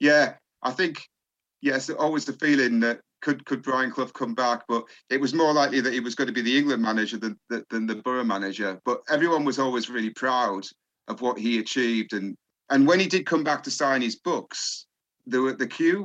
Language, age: English, 40-59